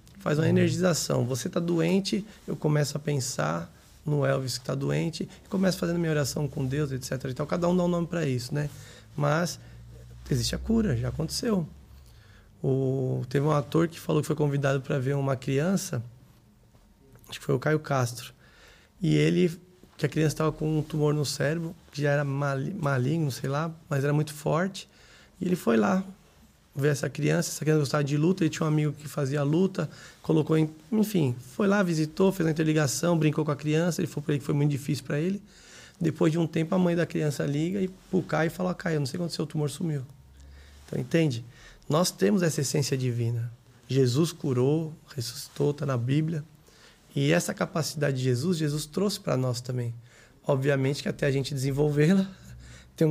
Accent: Brazilian